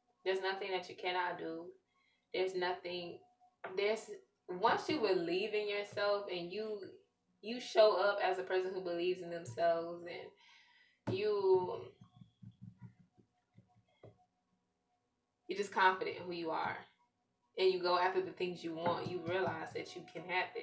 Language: English